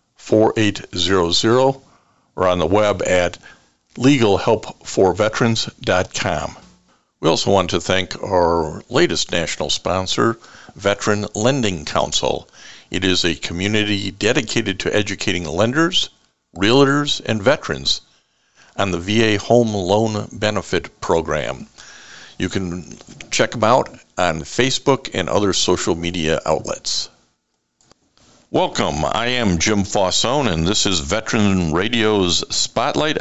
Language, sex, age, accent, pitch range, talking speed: English, male, 60-79, American, 90-110 Hz, 115 wpm